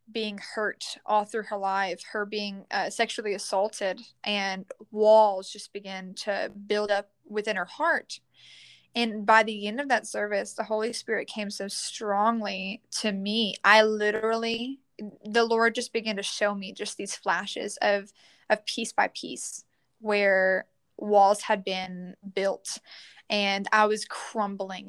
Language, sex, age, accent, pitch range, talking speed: English, female, 10-29, American, 200-225 Hz, 150 wpm